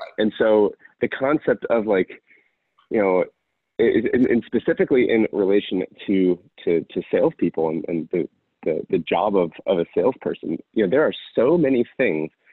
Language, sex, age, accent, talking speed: English, male, 30-49, American, 160 wpm